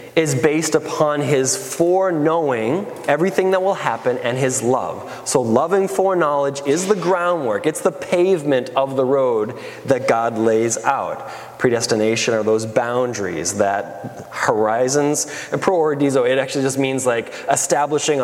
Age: 20-39